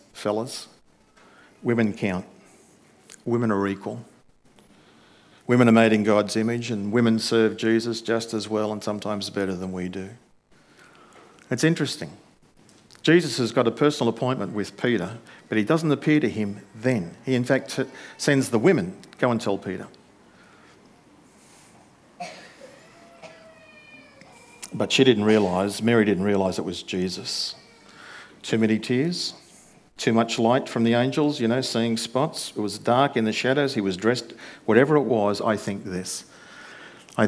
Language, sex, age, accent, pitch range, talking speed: English, male, 50-69, Australian, 100-125 Hz, 145 wpm